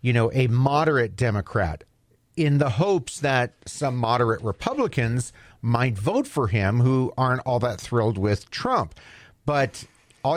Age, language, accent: 40-59, English, American